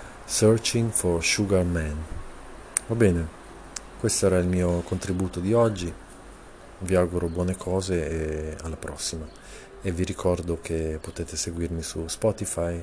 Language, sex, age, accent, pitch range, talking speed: Italian, male, 40-59, native, 80-95 Hz, 130 wpm